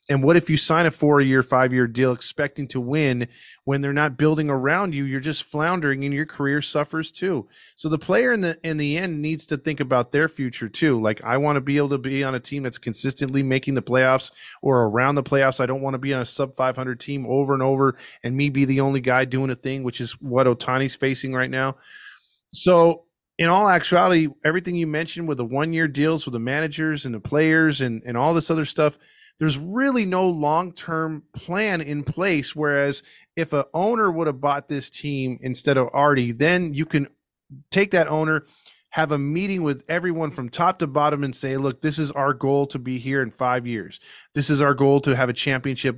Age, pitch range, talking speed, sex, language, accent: 20-39, 130-155 Hz, 220 wpm, male, English, American